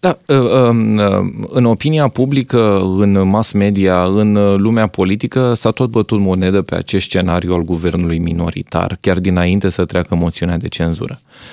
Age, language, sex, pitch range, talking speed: 20-39, Romanian, male, 85-105 Hz, 140 wpm